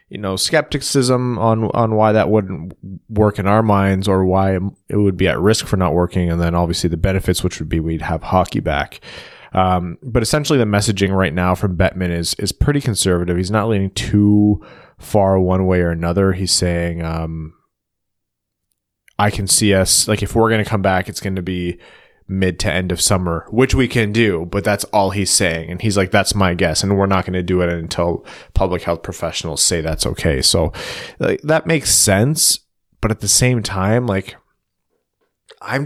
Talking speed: 200 wpm